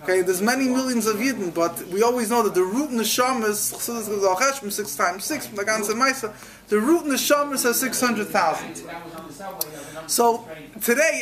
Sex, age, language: male, 20-39, English